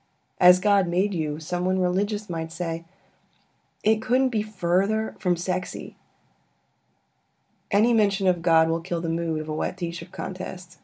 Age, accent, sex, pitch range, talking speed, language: 30-49, American, female, 180-200 Hz, 150 wpm, English